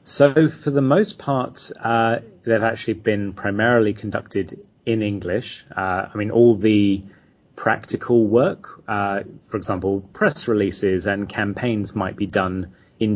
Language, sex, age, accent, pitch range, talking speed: English, male, 30-49, British, 95-110 Hz, 140 wpm